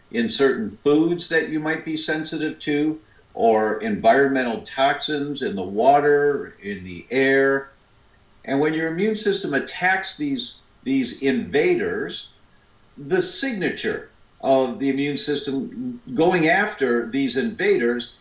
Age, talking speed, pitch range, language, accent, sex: 60-79, 120 wpm, 135-200 Hz, English, American, male